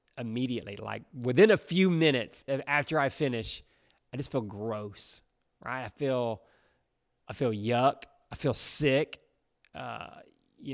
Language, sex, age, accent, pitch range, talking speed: English, male, 30-49, American, 120-170 Hz, 135 wpm